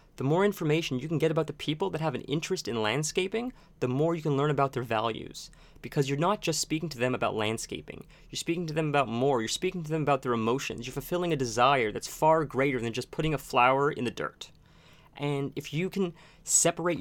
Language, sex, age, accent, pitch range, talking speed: English, male, 30-49, American, 135-165 Hz, 230 wpm